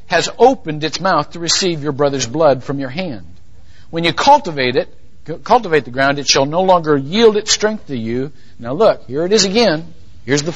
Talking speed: 205 wpm